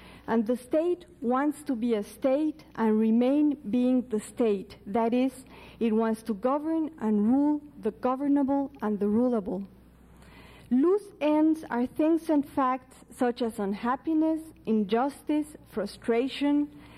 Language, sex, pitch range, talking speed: English, female, 225-285 Hz, 130 wpm